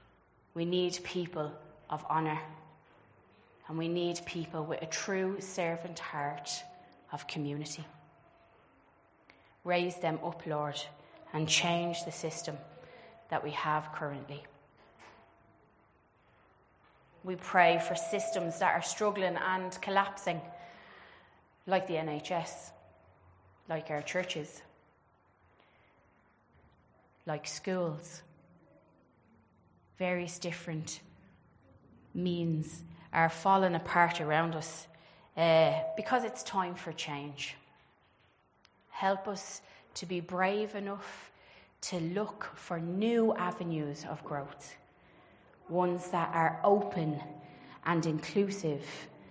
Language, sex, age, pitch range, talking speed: English, female, 30-49, 150-180 Hz, 95 wpm